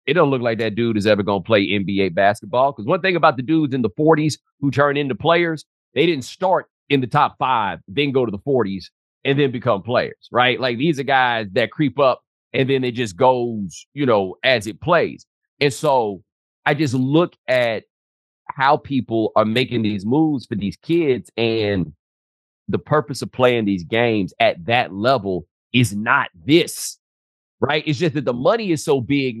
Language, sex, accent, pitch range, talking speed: English, male, American, 105-150 Hz, 195 wpm